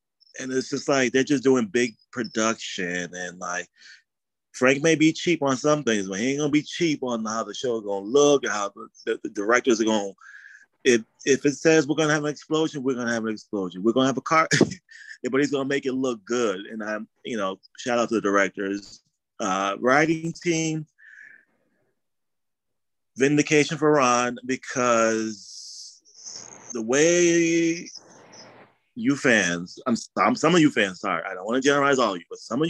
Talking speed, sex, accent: 185 wpm, male, American